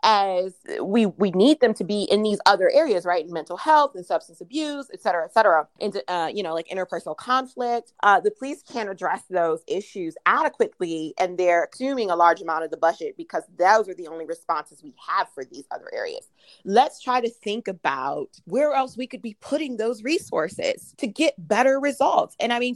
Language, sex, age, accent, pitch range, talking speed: English, female, 30-49, American, 180-260 Hz, 205 wpm